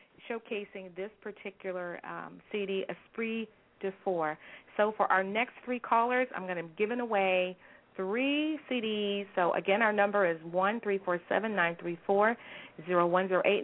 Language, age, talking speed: English, 40-59, 165 wpm